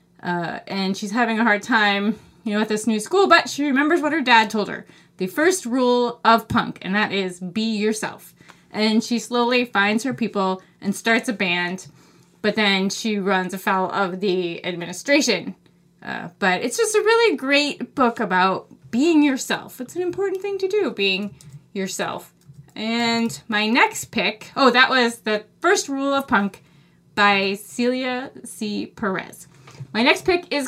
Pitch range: 200-260 Hz